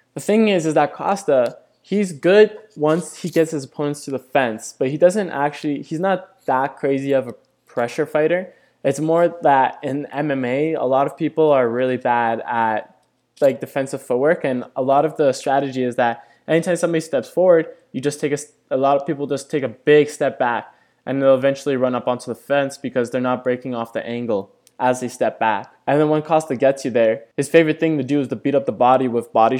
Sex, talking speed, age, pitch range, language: male, 220 wpm, 20-39, 125-155 Hz, English